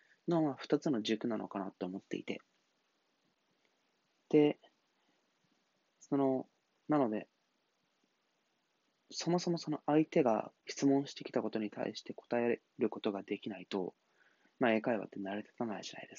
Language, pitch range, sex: Japanese, 110-140 Hz, male